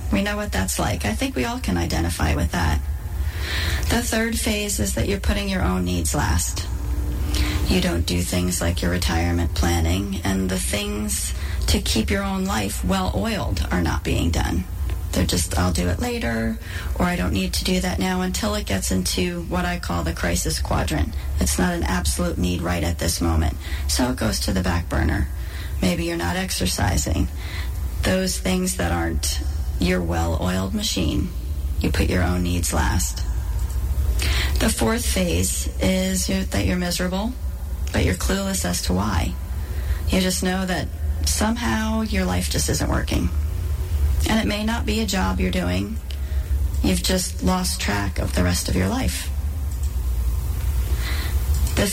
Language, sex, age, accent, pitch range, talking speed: English, female, 30-49, American, 75-90 Hz, 170 wpm